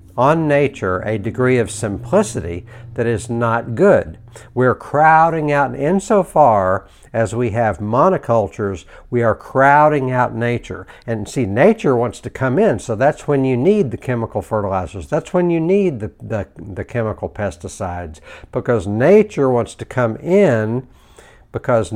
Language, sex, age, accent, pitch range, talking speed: English, male, 60-79, American, 105-130 Hz, 155 wpm